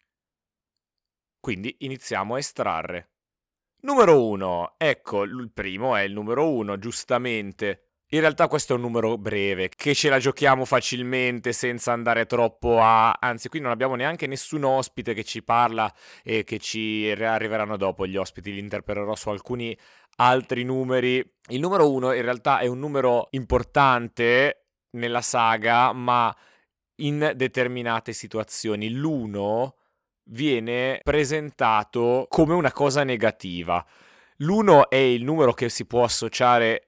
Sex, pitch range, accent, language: male, 105-125 Hz, native, Italian